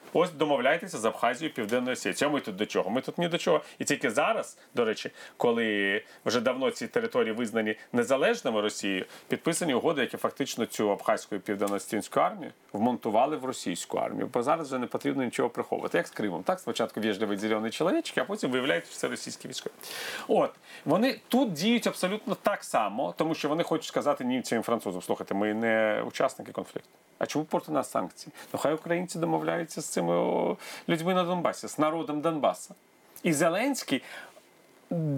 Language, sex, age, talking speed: Ukrainian, male, 40-59, 170 wpm